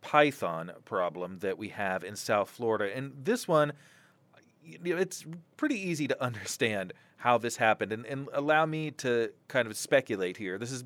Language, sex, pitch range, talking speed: English, male, 120-160 Hz, 160 wpm